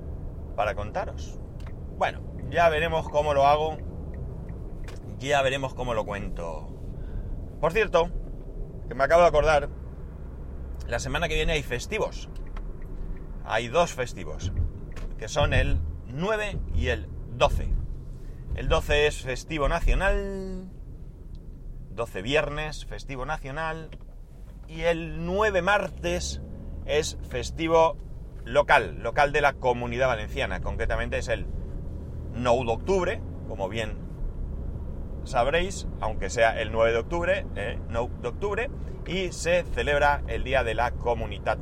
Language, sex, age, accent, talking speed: Spanish, male, 30-49, Spanish, 120 wpm